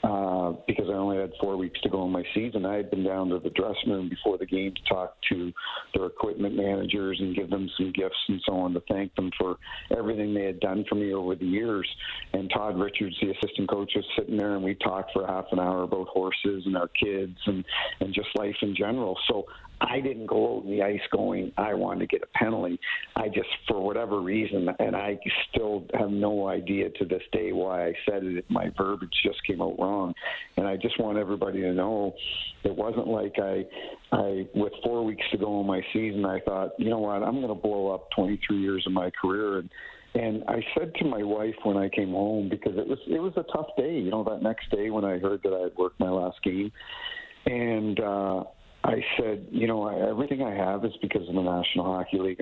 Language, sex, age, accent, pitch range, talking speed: English, male, 50-69, American, 95-105 Hz, 230 wpm